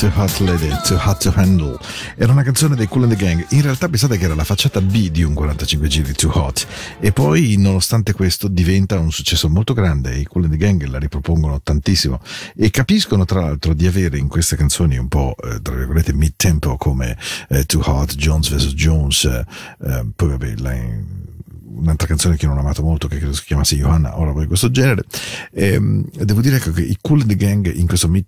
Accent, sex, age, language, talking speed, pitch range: Italian, male, 40-59, Spanish, 215 wpm, 75-95 Hz